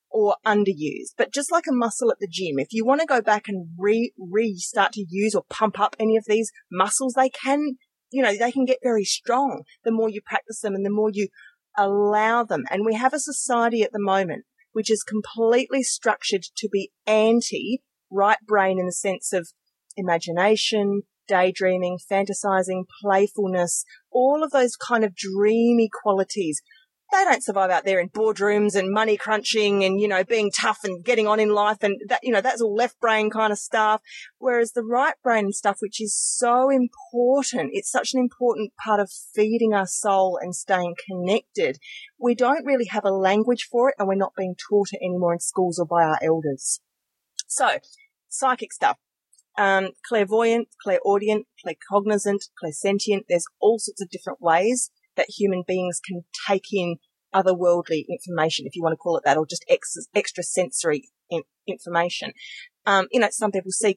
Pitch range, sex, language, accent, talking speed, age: 190-235 Hz, female, English, Australian, 180 wpm, 30-49